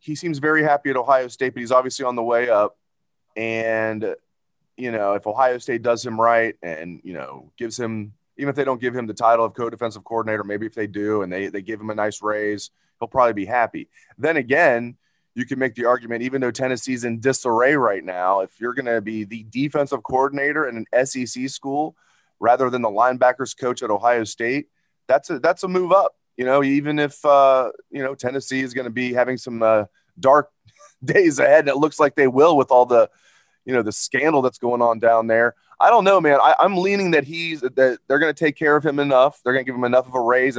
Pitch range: 115-145 Hz